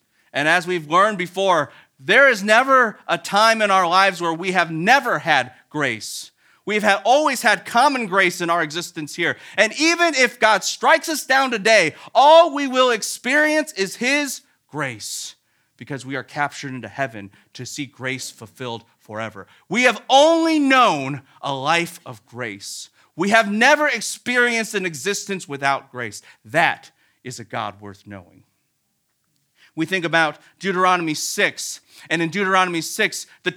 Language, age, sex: English, 40-59, male